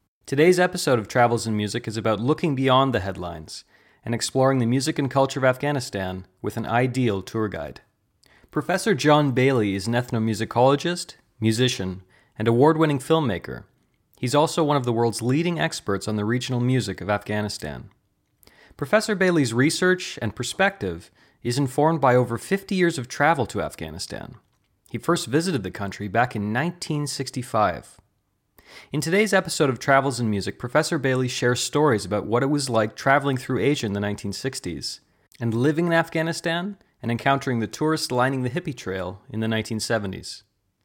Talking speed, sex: 160 wpm, male